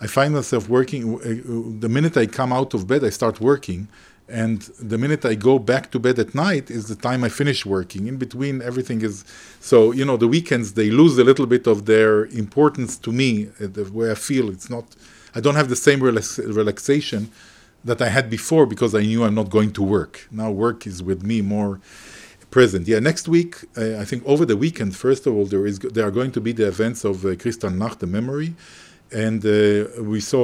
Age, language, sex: 40-59, Dutch, male